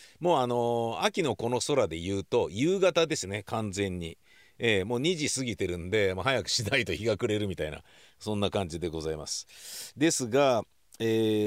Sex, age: male, 40-59